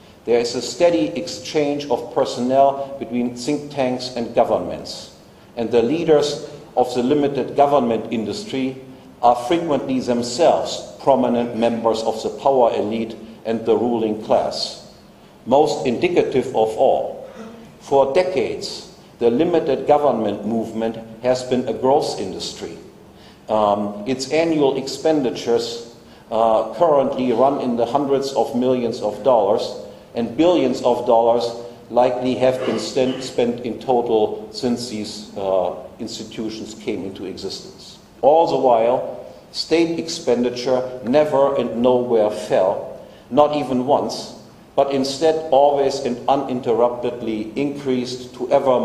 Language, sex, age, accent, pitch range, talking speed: English, male, 50-69, German, 115-140 Hz, 120 wpm